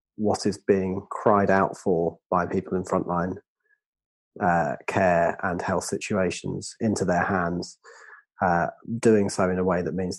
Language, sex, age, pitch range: English, male, 30-49, 95-110 Hz